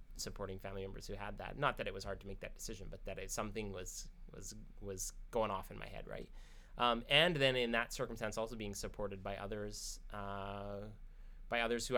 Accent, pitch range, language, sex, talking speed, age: American, 100-120 Hz, English, male, 210 wpm, 20-39